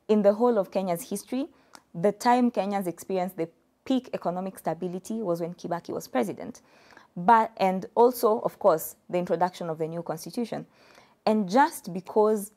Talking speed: 160 wpm